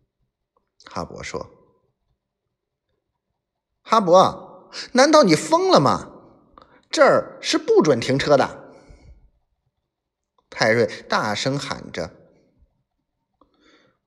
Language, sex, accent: Chinese, male, native